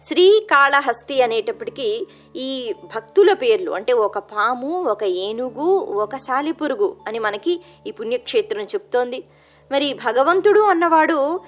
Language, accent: Telugu, native